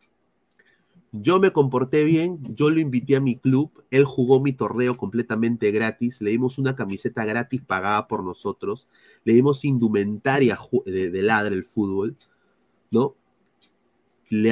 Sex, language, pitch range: male, Spanish, 110-155 Hz